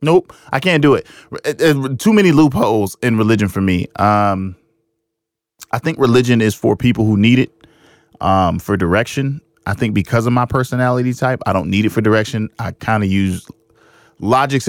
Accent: American